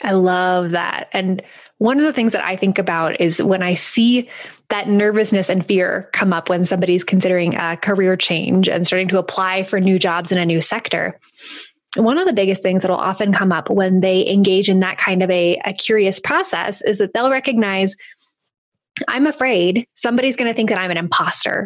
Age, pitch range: 20-39, 190-235 Hz